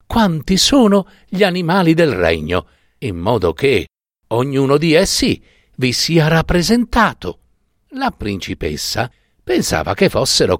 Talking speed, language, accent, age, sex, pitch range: 115 wpm, Italian, native, 60-79, male, 120-180 Hz